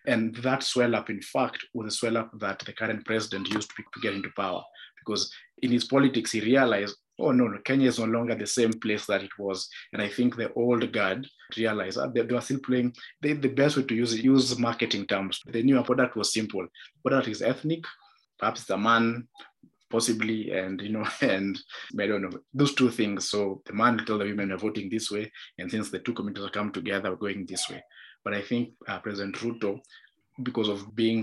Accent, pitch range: South African, 100-120 Hz